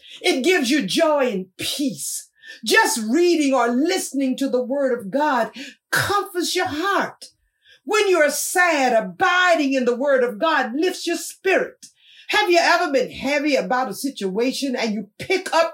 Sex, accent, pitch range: female, American, 255-340 Hz